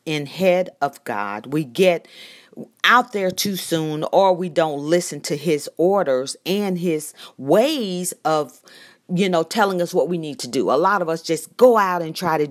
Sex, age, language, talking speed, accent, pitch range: female, 40-59, English, 190 wpm, American, 150-205 Hz